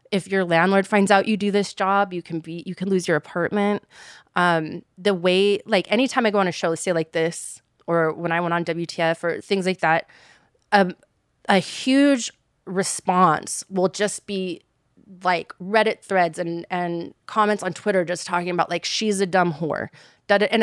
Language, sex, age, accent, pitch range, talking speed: English, female, 30-49, American, 165-200 Hz, 185 wpm